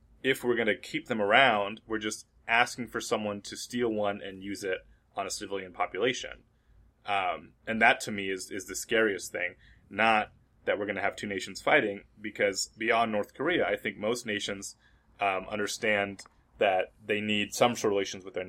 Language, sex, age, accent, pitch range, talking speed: English, male, 20-39, American, 100-125 Hz, 190 wpm